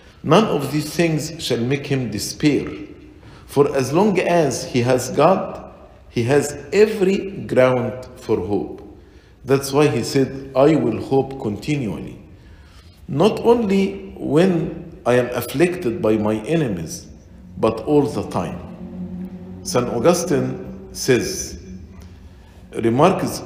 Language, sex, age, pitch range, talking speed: English, male, 50-69, 110-170 Hz, 120 wpm